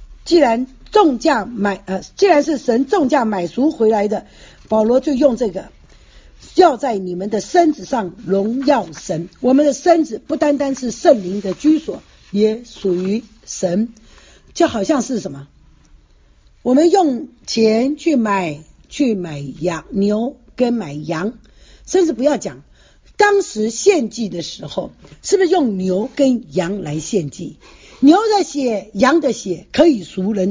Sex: female